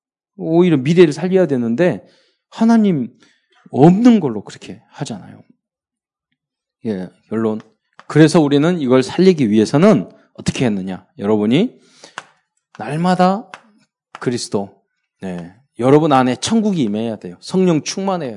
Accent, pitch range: native, 105-160 Hz